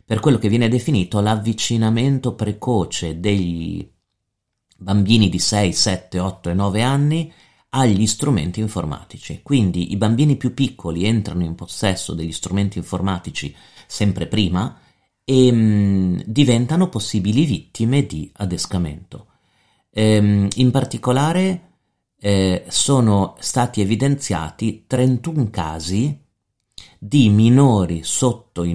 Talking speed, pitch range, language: 110 wpm, 90-125 Hz, Italian